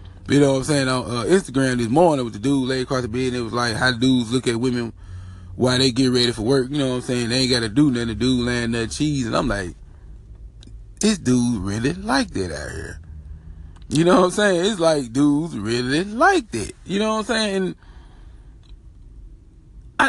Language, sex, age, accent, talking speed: English, male, 20-39, American, 210 wpm